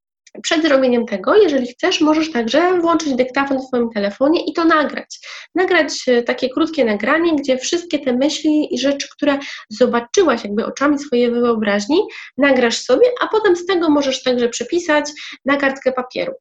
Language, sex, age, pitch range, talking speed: Polish, female, 20-39, 235-300 Hz, 155 wpm